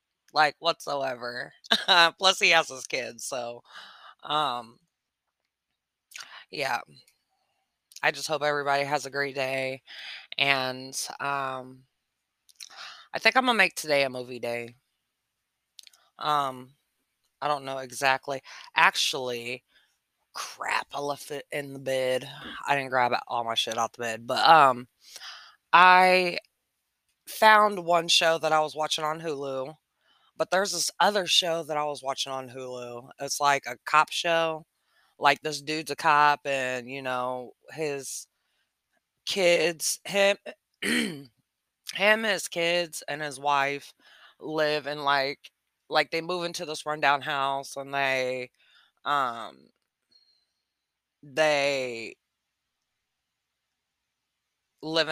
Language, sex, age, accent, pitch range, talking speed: English, female, 20-39, American, 130-160 Hz, 120 wpm